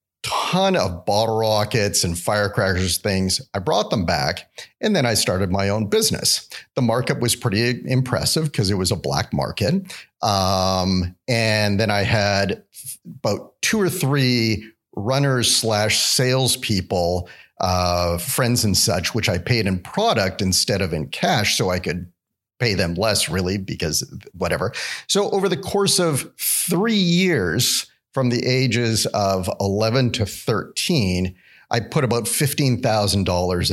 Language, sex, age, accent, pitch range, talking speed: English, male, 40-59, American, 100-135 Hz, 145 wpm